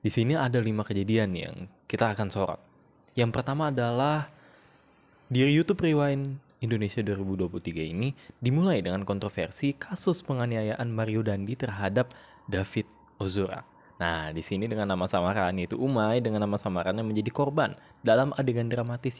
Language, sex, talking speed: Indonesian, male, 140 wpm